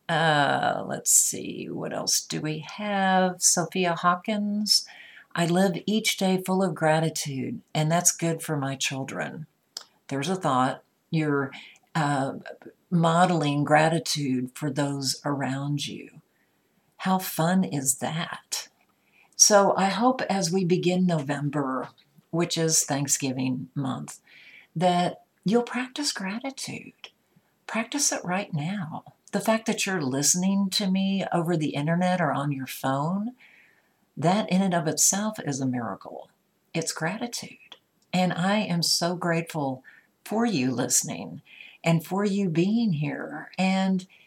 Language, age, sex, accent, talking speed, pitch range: English, 50-69, female, American, 130 wpm, 150-190 Hz